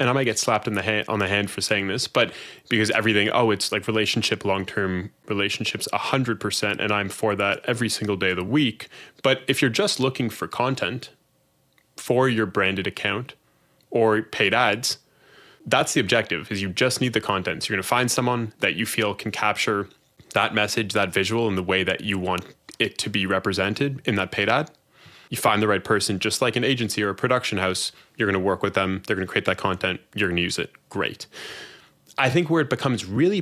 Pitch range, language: 100-125 Hz, English